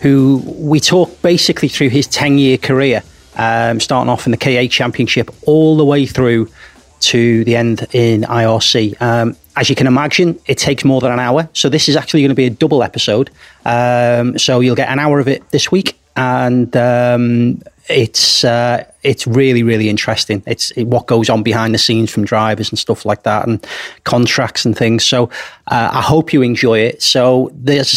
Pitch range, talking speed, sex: 115-135 Hz, 190 wpm, male